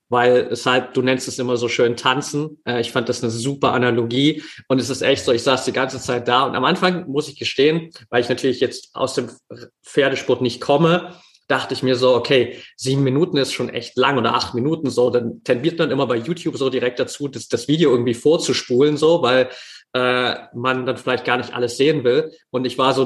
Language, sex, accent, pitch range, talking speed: German, male, German, 120-135 Hz, 220 wpm